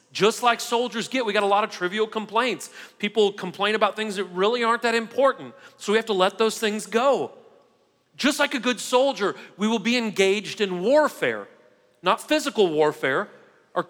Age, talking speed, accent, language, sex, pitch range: 40-59, 185 wpm, American, English, male, 185-245 Hz